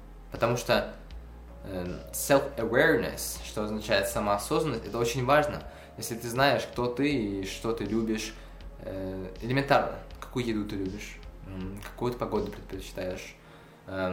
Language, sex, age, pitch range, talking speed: Russian, male, 20-39, 95-115 Hz, 115 wpm